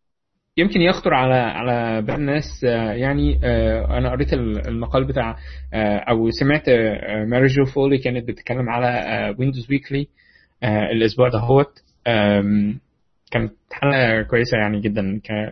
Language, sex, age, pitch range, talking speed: Arabic, male, 20-39, 105-135 Hz, 110 wpm